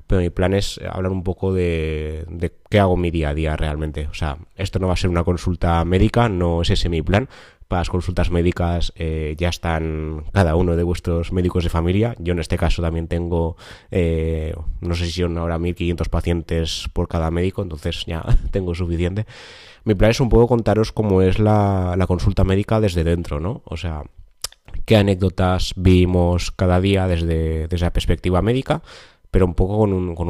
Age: 20-39